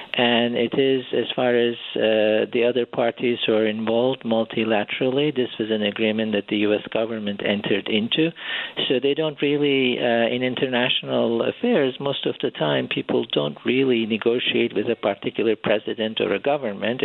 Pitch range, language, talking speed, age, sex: 110-130 Hz, English, 165 wpm, 50-69, male